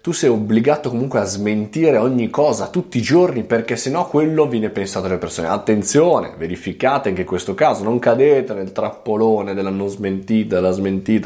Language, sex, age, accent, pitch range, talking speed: Italian, male, 20-39, native, 95-135 Hz, 175 wpm